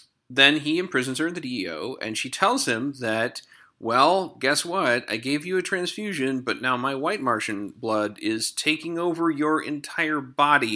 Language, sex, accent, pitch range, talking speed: English, male, American, 120-170 Hz, 180 wpm